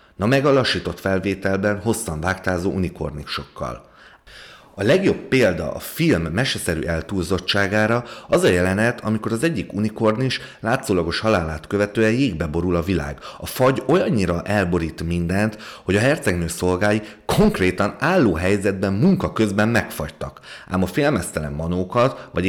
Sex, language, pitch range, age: male, Hungarian, 85-110 Hz, 30-49